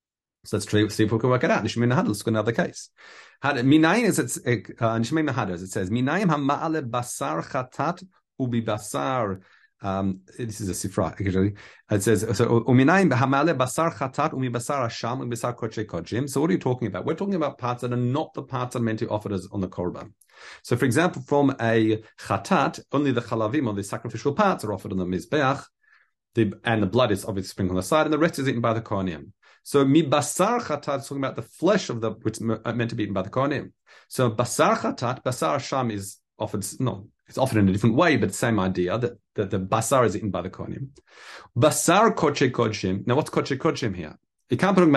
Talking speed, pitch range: 200 wpm, 105-140 Hz